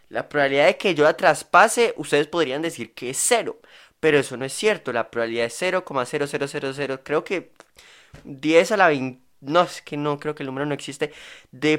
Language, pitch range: Spanish, 125-170 Hz